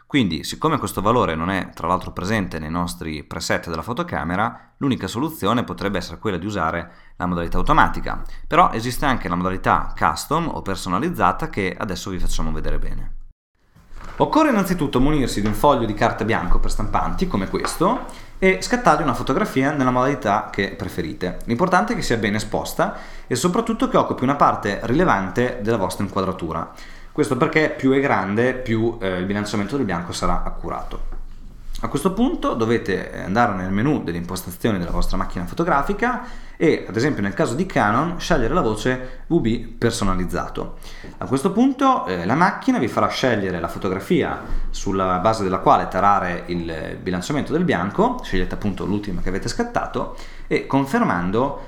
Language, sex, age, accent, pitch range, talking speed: Italian, male, 20-39, native, 90-130 Hz, 165 wpm